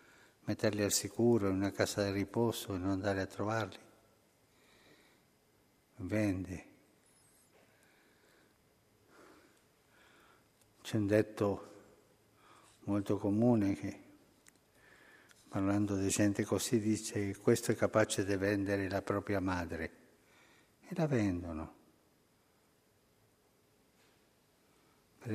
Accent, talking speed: native, 90 wpm